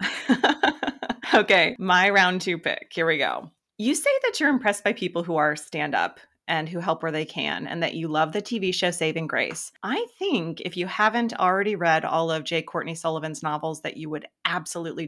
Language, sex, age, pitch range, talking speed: English, female, 30-49, 160-210 Hz, 205 wpm